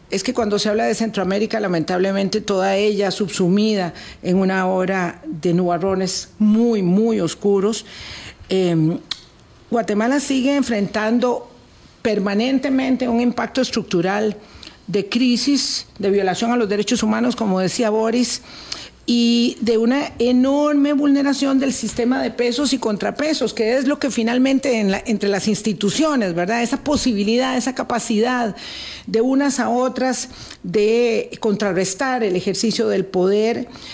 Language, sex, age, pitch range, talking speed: Spanish, female, 50-69, 195-245 Hz, 125 wpm